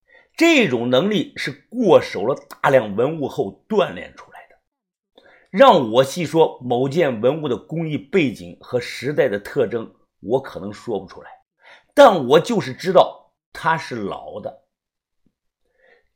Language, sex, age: Chinese, male, 50-69